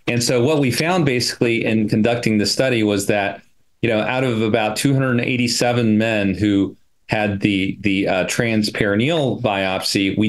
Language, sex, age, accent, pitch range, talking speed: English, male, 40-59, American, 100-115 Hz, 155 wpm